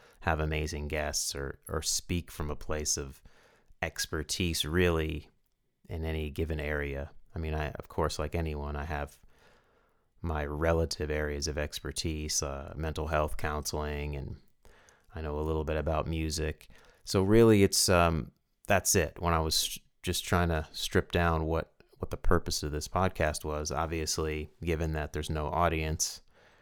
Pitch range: 75-80 Hz